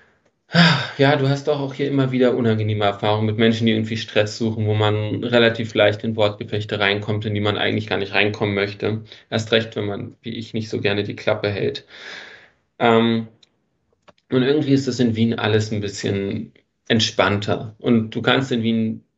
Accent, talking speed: German, 180 wpm